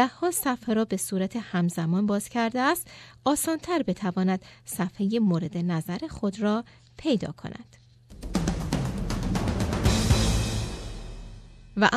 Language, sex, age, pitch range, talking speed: Persian, female, 30-49, 185-255 Hz, 95 wpm